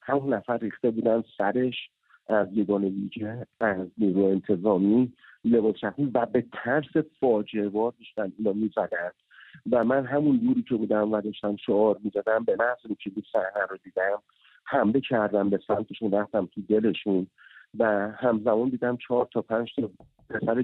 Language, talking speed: English, 140 wpm